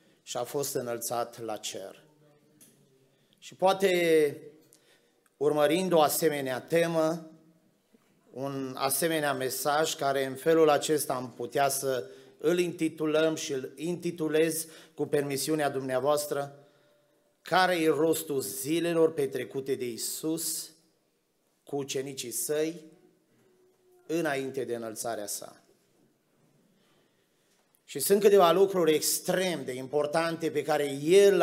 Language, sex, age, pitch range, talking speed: Romanian, male, 30-49, 140-170 Hz, 105 wpm